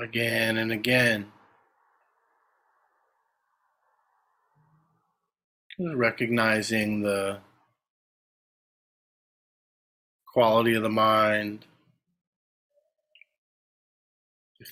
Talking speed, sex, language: 40 wpm, male, English